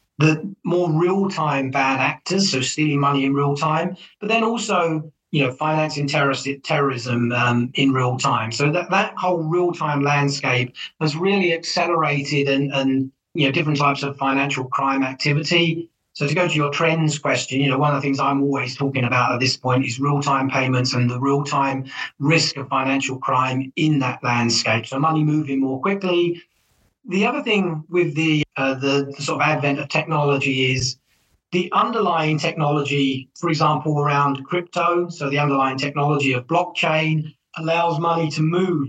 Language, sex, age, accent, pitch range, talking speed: English, male, 40-59, British, 135-165 Hz, 170 wpm